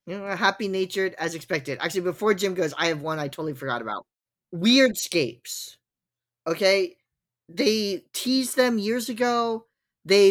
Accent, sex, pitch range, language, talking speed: American, male, 180-250 Hz, English, 145 wpm